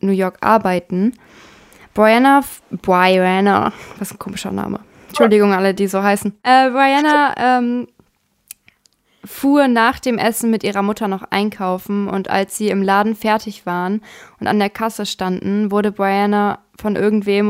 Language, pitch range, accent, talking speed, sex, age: German, 195-225 Hz, German, 145 wpm, female, 20-39